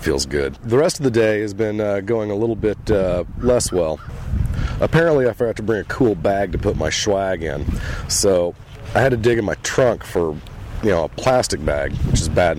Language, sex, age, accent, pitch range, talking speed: English, male, 40-59, American, 85-115 Hz, 225 wpm